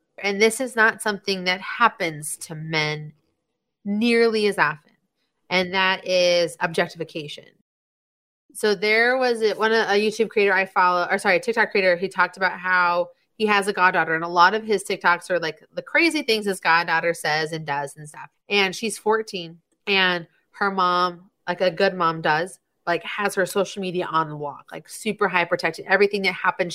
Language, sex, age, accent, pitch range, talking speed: English, female, 30-49, American, 175-215 Hz, 190 wpm